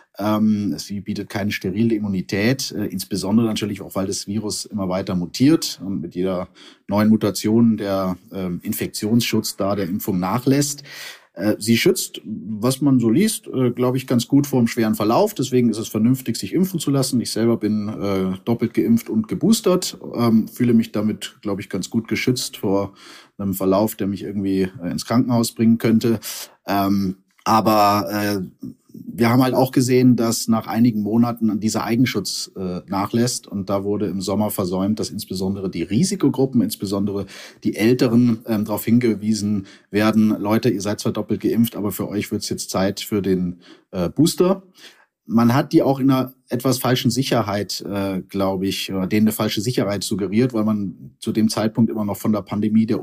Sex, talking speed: male, 180 wpm